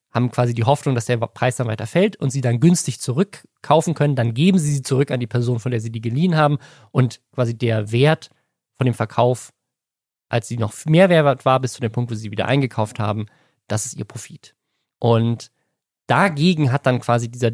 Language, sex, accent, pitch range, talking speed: German, male, German, 120-150 Hz, 210 wpm